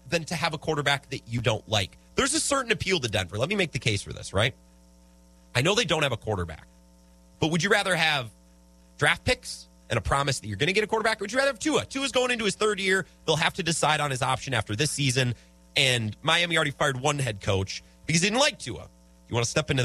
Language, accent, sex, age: English, American, male, 30-49